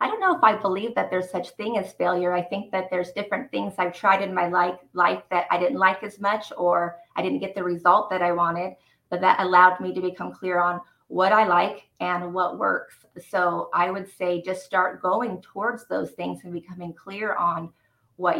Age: 30-49